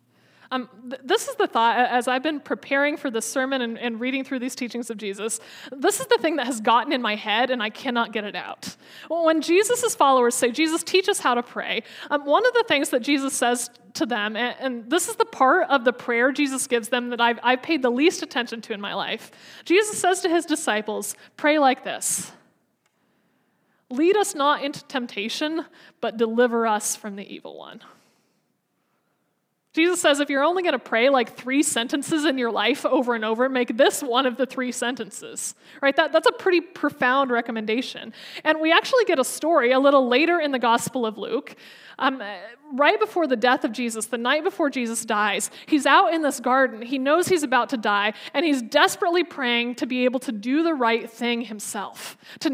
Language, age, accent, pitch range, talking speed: English, 20-39, American, 235-310 Hz, 205 wpm